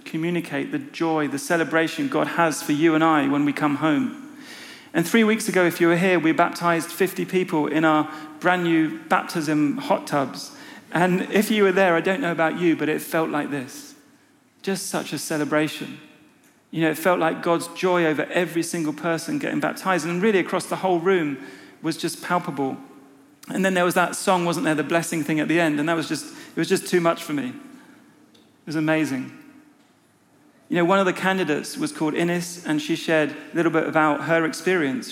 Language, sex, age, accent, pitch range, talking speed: English, male, 40-59, British, 155-190 Hz, 205 wpm